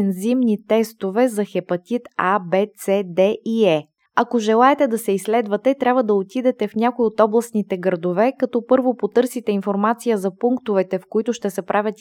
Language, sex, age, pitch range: Bulgarian, female, 20-39, 195-235 Hz